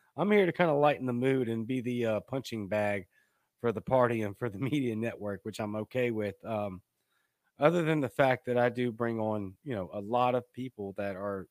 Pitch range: 110-135 Hz